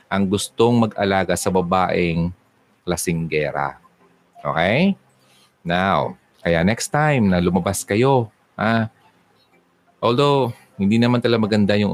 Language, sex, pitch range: Filipino, male, 85-110 Hz